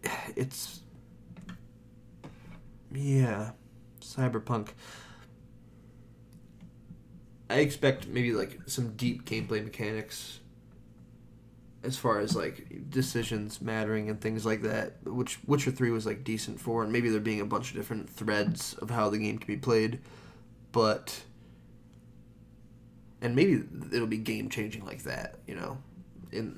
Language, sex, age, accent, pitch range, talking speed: English, male, 20-39, American, 110-125 Hz, 125 wpm